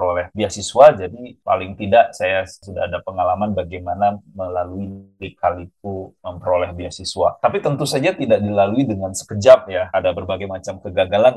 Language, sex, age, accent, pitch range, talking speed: Indonesian, male, 30-49, native, 95-125 Hz, 135 wpm